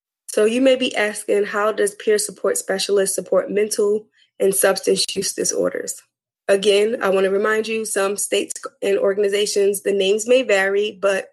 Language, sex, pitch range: English, female, 190-245 Hz